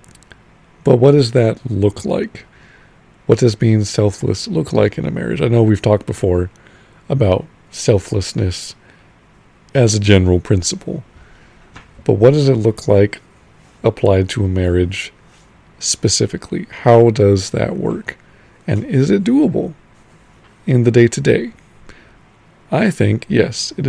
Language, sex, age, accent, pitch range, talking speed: English, male, 40-59, American, 95-120 Hz, 130 wpm